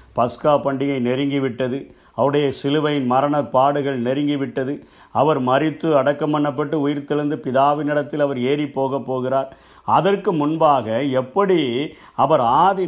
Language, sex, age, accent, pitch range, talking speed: Tamil, male, 50-69, native, 130-165 Hz, 105 wpm